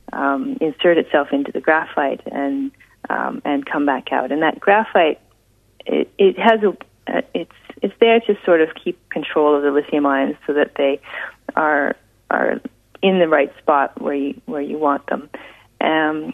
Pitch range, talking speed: 145-200 Hz, 175 wpm